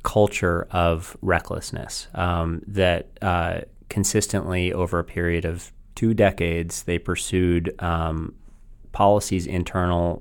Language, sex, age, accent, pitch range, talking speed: English, male, 30-49, American, 85-95 Hz, 105 wpm